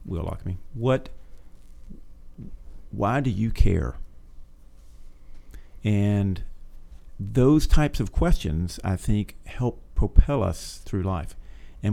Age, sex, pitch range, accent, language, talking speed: 50-69, male, 80-115 Hz, American, English, 105 wpm